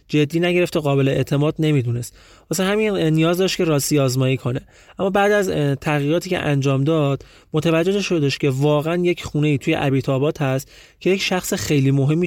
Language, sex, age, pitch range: Persian, male, 30-49, 130-170 Hz